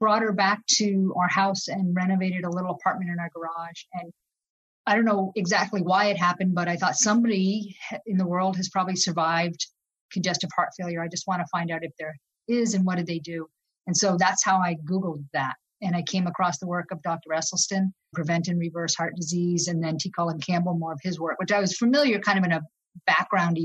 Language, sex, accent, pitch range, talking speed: English, female, American, 170-195 Hz, 225 wpm